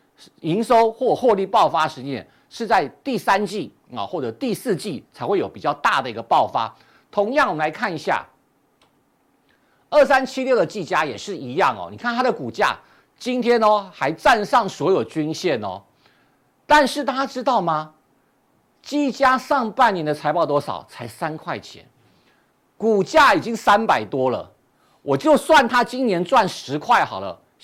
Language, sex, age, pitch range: Chinese, male, 50-69, 150-255 Hz